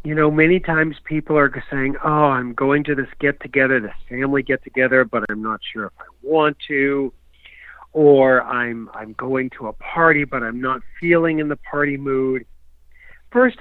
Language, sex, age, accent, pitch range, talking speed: English, male, 50-69, American, 125-170 Hz, 185 wpm